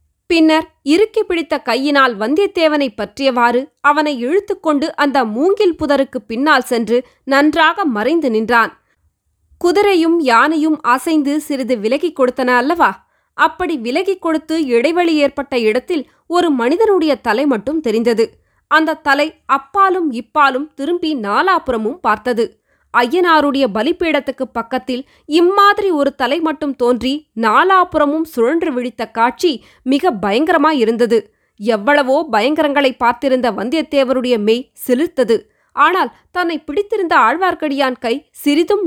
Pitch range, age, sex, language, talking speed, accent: 245-325 Hz, 20-39, female, Tamil, 105 wpm, native